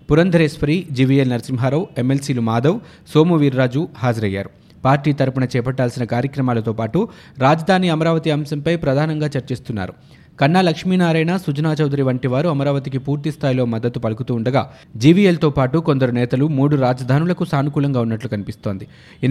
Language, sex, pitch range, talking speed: Telugu, male, 130-160 Hz, 120 wpm